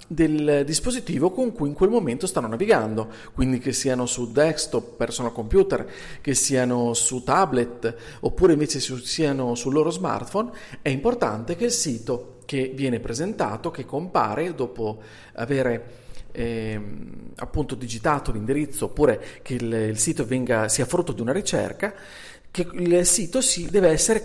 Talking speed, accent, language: 145 wpm, native, Italian